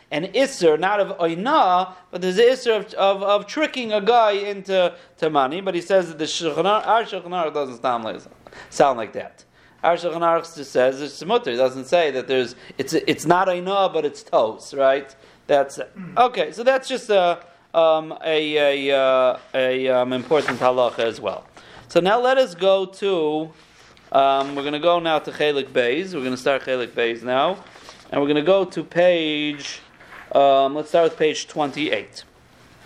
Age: 40-59